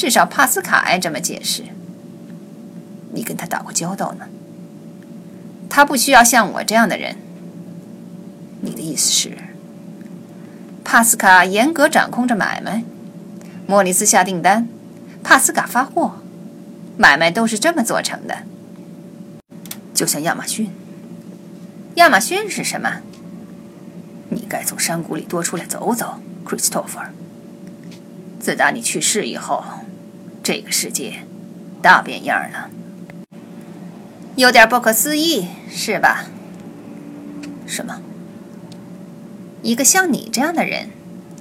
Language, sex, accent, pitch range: Chinese, female, native, 190-220 Hz